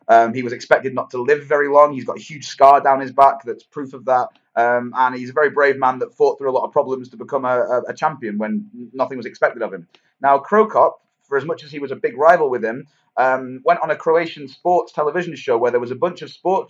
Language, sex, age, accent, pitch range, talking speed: English, male, 30-49, British, 125-170 Hz, 270 wpm